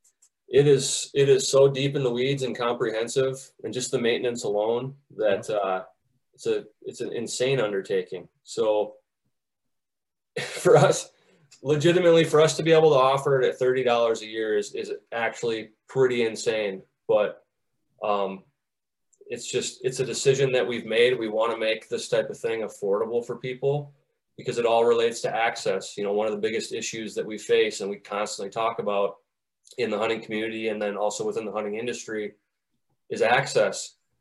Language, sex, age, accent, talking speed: English, male, 20-39, American, 175 wpm